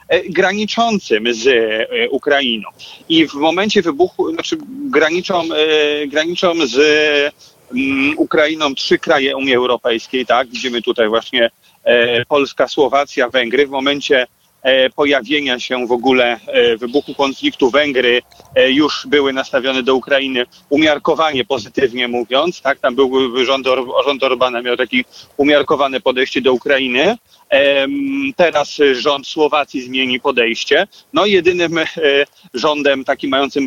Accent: native